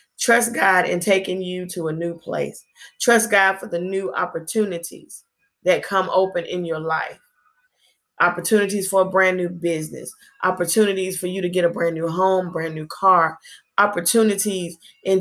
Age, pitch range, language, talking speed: 20-39, 175-205 Hz, English, 160 wpm